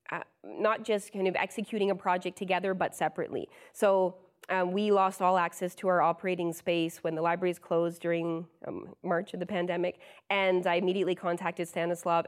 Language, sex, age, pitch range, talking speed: English, female, 20-39, 180-215 Hz, 175 wpm